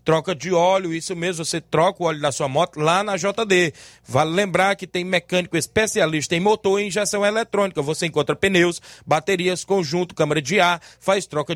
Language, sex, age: Portuguese, male, 20-39